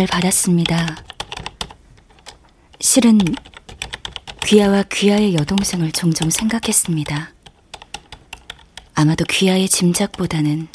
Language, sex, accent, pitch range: Korean, female, native, 140-185 Hz